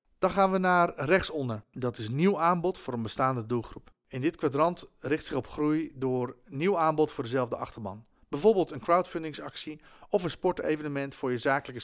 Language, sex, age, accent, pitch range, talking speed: Dutch, male, 40-59, Dutch, 125-160 Hz, 175 wpm